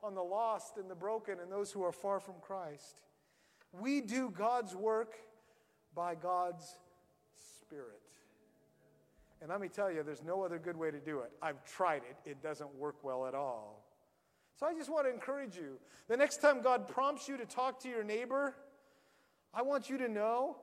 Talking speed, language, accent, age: 190 wpm, English, American, 40-59